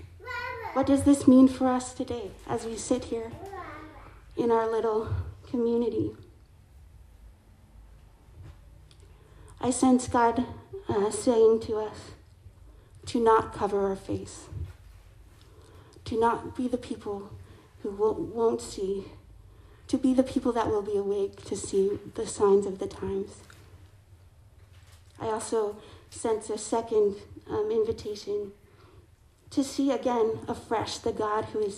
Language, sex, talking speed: English, female, 125 wpm